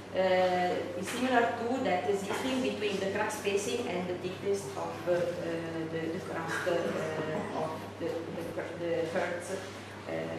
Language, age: English, 30-49